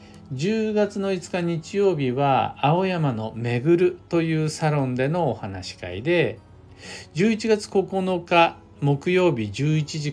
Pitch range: 105-160 Hz